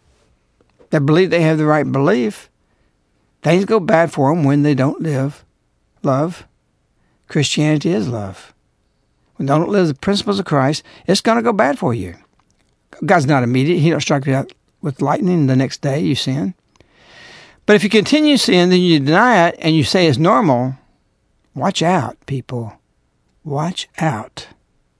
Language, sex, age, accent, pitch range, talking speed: English, male, 60-79, American, 130-175 Hz, 170 wpm